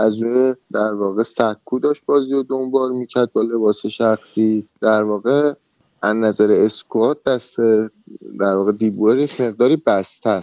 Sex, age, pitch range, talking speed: male, 20-39, 115-145 Hz, 140 wpm